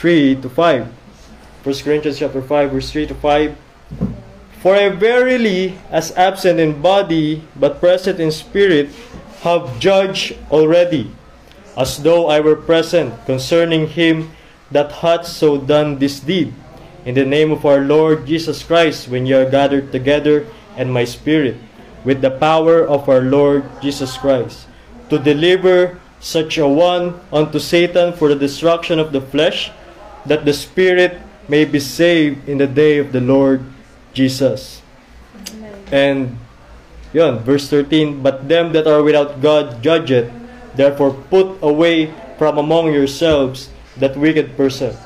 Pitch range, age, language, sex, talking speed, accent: 140-175 Hz, 20-39, Filipino, male, 145 wpm, native